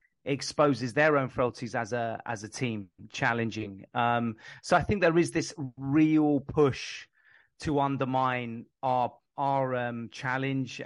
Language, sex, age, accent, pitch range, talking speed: English, male, 30-49, British, 125-150 Hz, 140 wpm